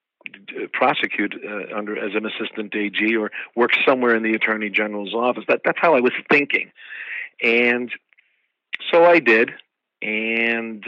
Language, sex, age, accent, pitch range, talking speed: English, male, 50-69, American, 105-120 Hz, 150 wpm